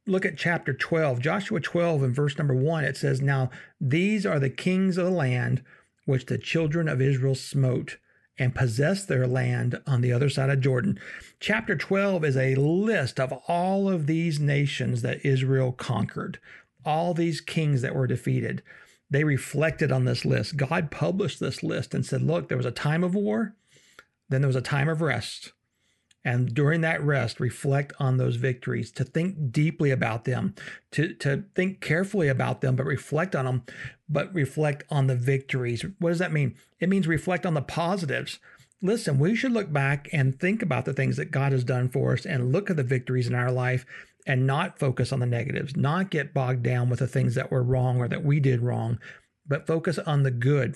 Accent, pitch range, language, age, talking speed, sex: American, 130-165 Hz, English, 50-69, 200 wpm, male